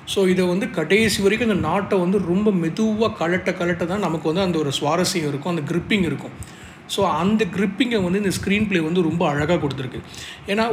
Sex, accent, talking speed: male, native, 185 wpm